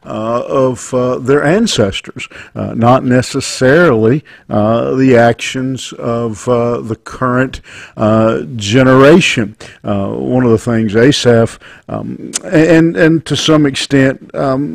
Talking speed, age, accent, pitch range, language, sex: 120 wpm, 50-69, American, 110-125 Hz, English, male